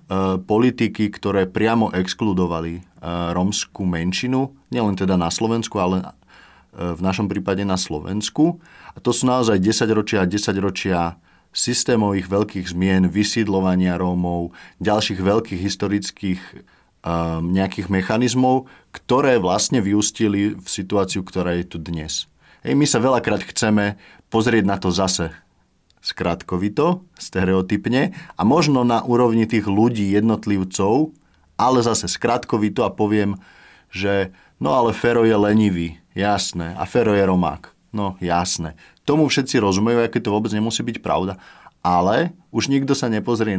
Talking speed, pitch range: 125 wpm, 95-115 Hz